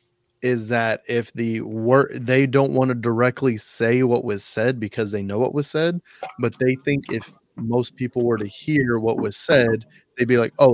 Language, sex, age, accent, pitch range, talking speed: English, male, 30-49, American, 110-130 Hz, 200 wpm